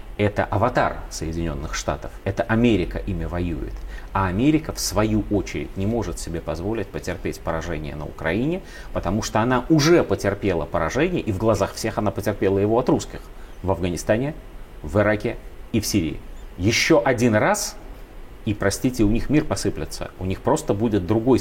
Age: 30-49